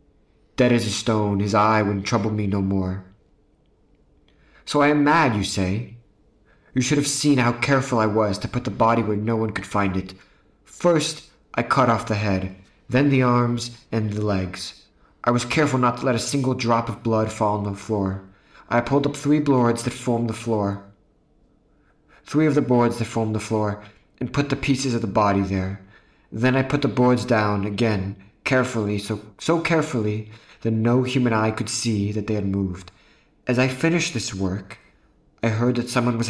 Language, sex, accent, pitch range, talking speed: English, male, American, 100-125 Hz, 195 wpm